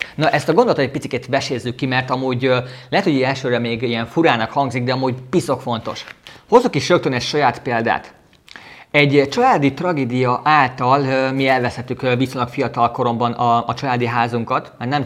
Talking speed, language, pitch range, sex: 165 wpm, Hungarian, 120-140 Hz, male